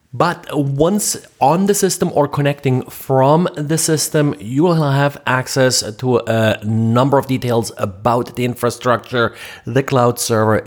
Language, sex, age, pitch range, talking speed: English, male, 30-49, 115-145 Hz, 140 wpm